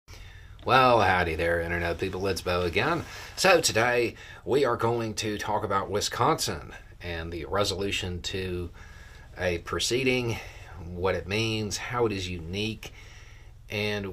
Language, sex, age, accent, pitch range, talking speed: English, male, 40-59, American, 90-110 Hz, 130 wpm